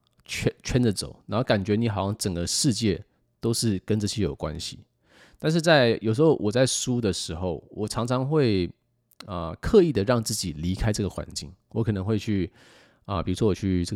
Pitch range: 90-120 Hz